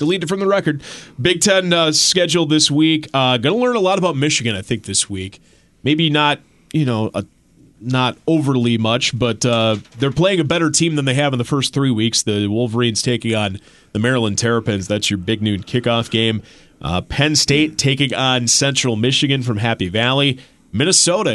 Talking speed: 190 wpm